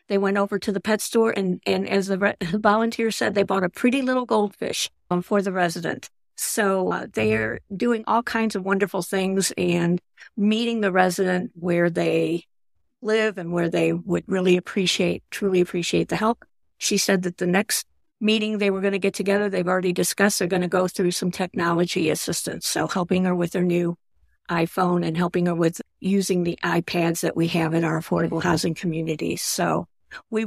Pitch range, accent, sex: 180-205 Hz, American, female